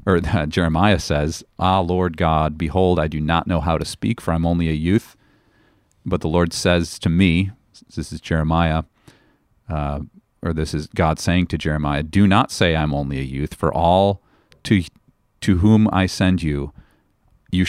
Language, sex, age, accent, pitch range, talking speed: English, male, 40-59, American, 80-95 Hz, 185 wpm